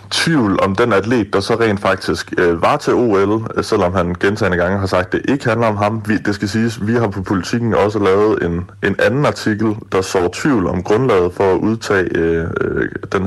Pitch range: 95-110 Hz